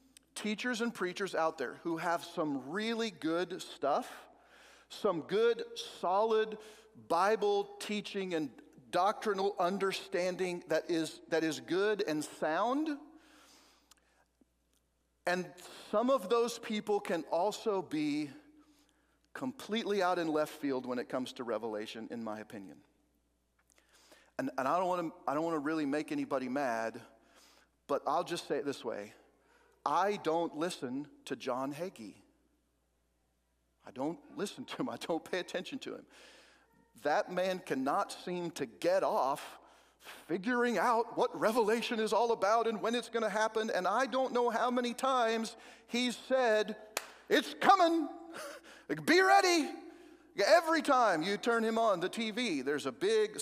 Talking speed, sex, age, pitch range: 140 wpm, male, 40-59, 165-260 Hz